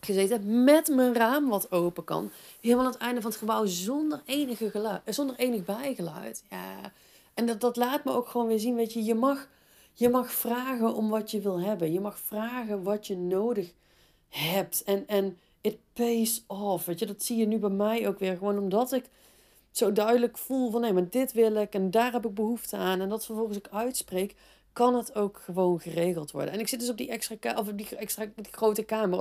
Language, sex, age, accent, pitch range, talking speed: Dutch, female, 40-59, Dutch, 195-245 Hz, 220 wpm